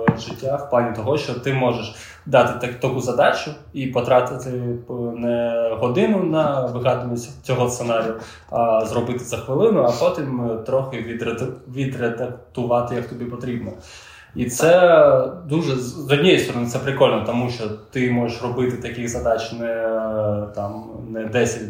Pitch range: 110-135 Hz